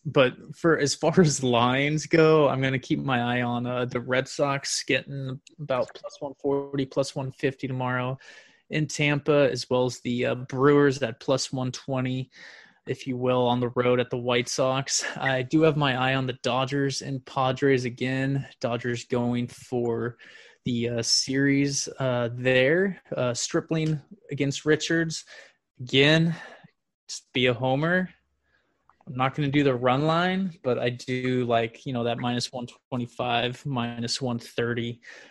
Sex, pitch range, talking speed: male, 125-145 Hz, 160 wpm